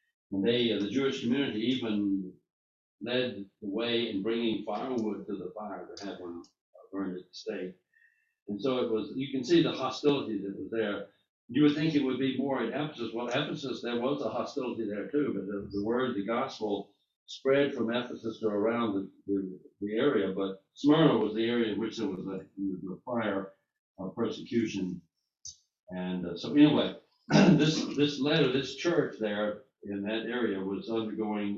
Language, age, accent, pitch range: English, 60-79, American, 100-125 Hz